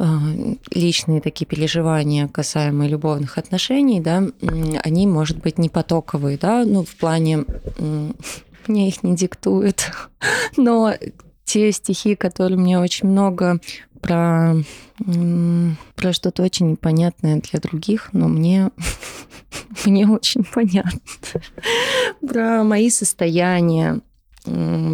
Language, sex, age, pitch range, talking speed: Russian, female, 20-39, 165-215 Hz, 105 wpm